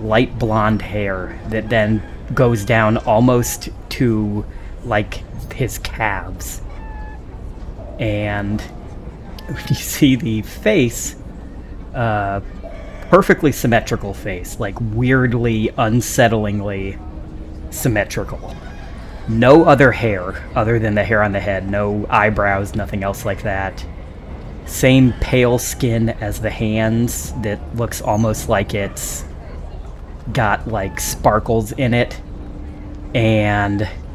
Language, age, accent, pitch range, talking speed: English, 30-49, American, 100-120 Hz, 100 wpm